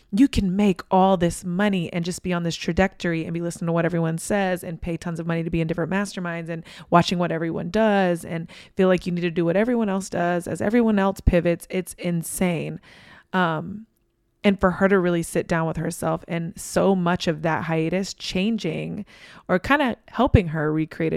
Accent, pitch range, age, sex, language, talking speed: American, 165-190 Hz, 20-39, female, English, 210 wpm